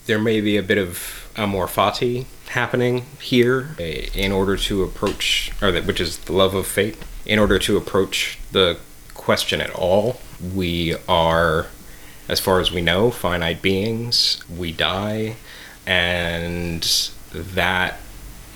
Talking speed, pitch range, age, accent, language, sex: 140 wpm, 85-105 Hz, 30-49, American, English, male